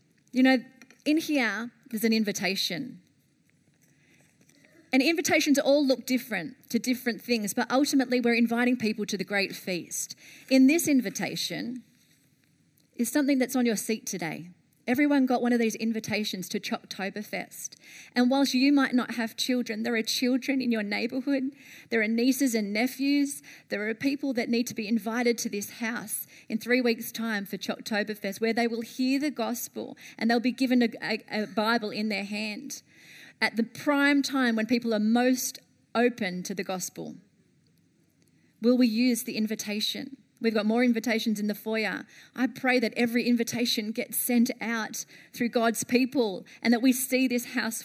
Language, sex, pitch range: English, female, 220-260 Hz